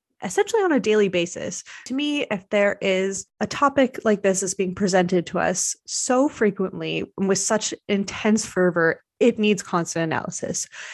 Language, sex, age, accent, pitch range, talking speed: English, female, 20-39, American, 180-225 Hz, 160 wpm